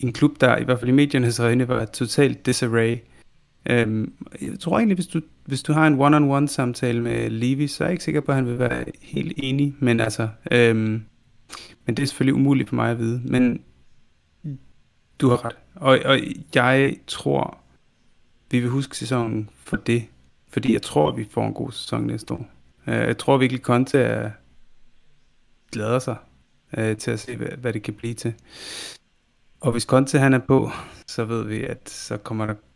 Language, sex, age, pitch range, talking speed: Danish, male, 30-49, 115-135 Hz, 185 wpm